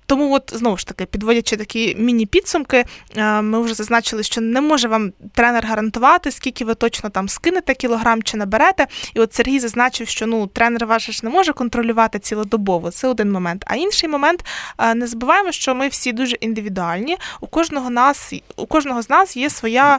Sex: female